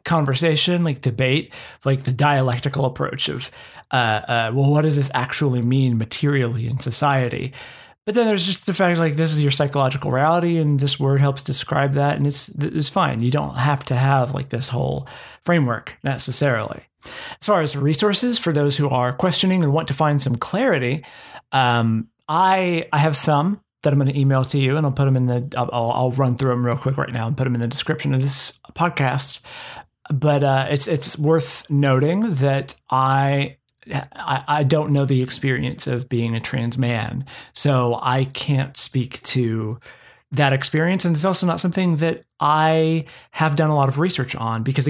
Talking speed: 190 wpm